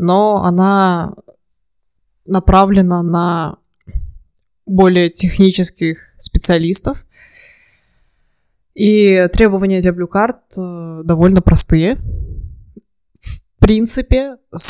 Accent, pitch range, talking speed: native, 165-185 Hz, 60 wpm